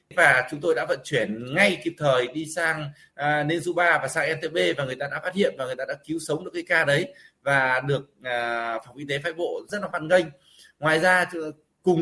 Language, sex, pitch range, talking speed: Vietnamese, male, 145-190 Hz, 235 wpm